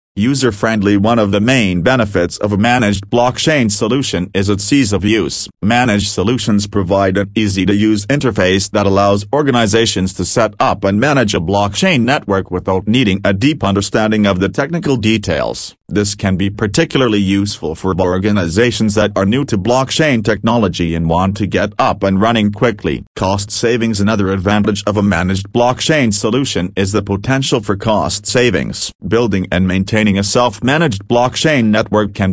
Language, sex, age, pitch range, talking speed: English, male, 40-59, 100-120 Hz, 160 wpm